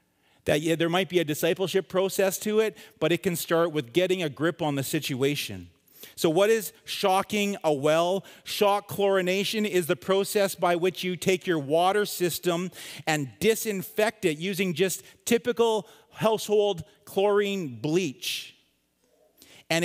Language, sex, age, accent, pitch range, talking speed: English, male, 40-59, American, 110-180 Hz, 140 wpm